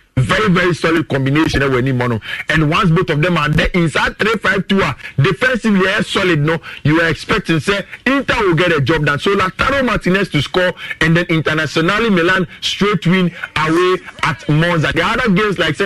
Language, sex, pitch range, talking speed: English, male, 140-210 Hz, 205 wpm